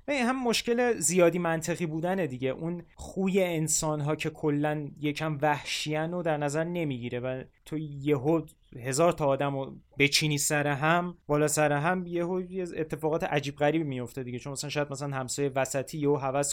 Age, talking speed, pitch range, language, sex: 20-39, 165 wpm, 135-160 Hz, Persian, male